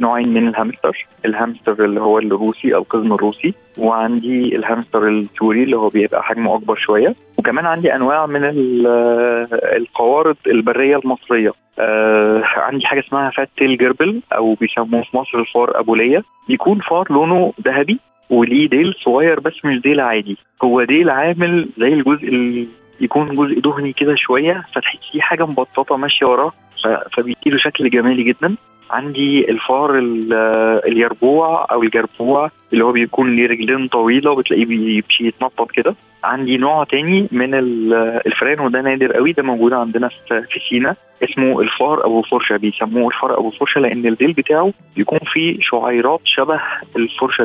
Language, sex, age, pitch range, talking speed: Arabic, male, 20-39, 115-145 Hz, 140 wpm